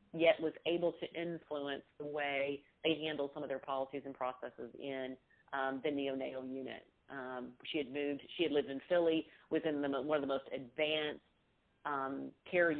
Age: 40-59